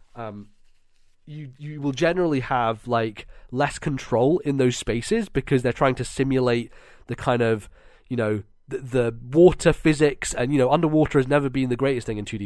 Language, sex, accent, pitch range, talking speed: English, male, British, 120-150 Hz, 185 wpm